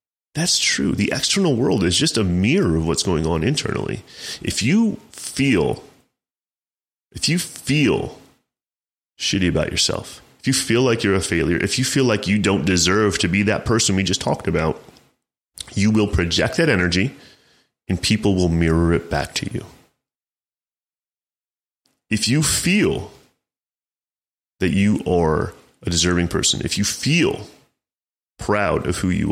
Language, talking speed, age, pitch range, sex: English, 150 wpm, 30-49, 85-110 Hz, male